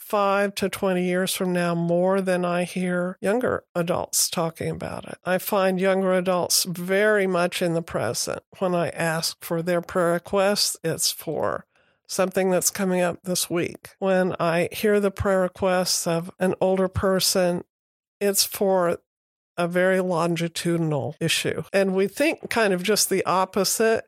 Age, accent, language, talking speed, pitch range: 50-69, American, English, 155 wpm, 175-205 Hz